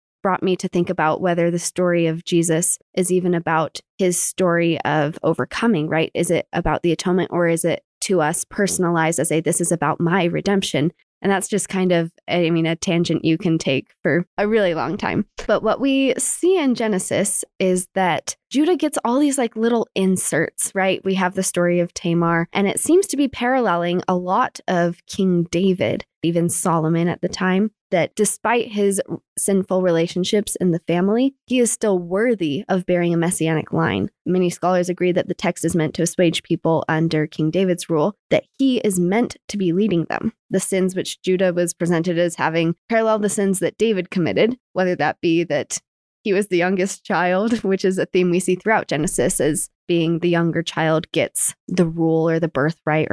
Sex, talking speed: female, 195 wpm